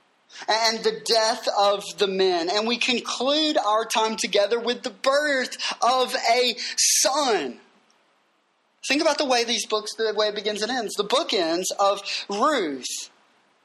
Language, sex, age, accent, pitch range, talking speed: English, male, 20-39, American, 225-280 Hz, 155 wpm